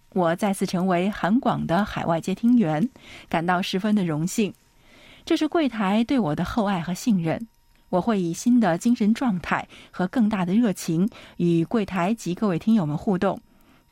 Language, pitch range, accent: Chinese, 175-230 Hz, native